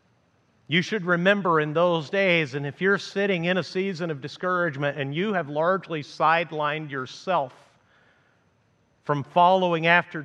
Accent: American